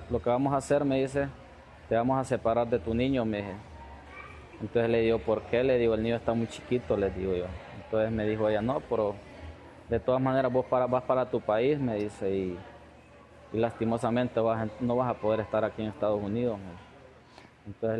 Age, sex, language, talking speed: 20-39, male, Spanish, 200 wpm